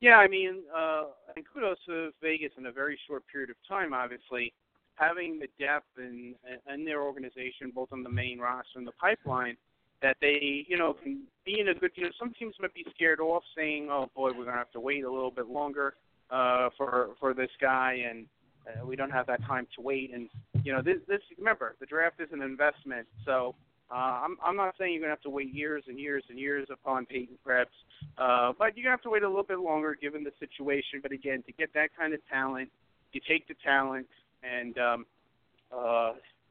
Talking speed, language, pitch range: 225 wpm, English, 130-165 Hz